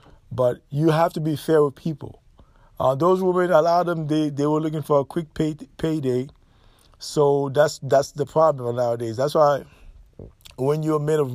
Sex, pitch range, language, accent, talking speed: male, 140-165 Hz, English, American, 195 wpm